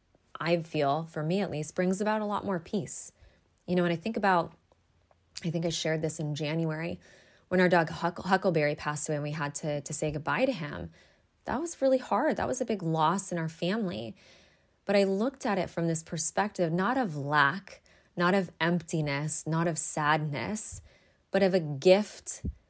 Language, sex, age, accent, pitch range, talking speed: English, female, 20-39, American, 155-185 Hz, 195 wpm